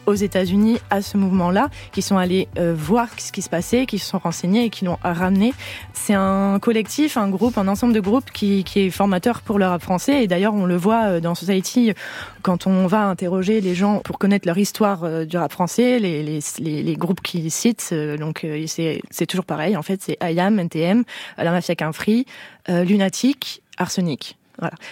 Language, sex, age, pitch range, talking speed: French, female, 20-39, 175-215 Hz, 210 wpm